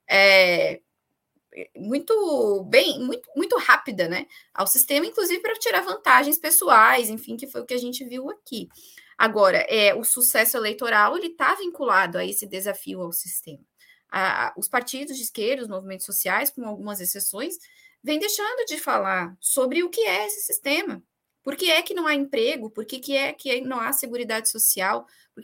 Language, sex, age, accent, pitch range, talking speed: Portuguese, female, 10-29, Brazilian, 215-290 Hz, 165 wpm